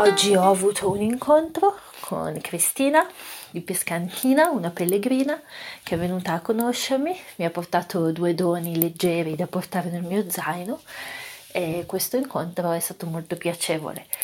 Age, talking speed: 30-49, 145 wpm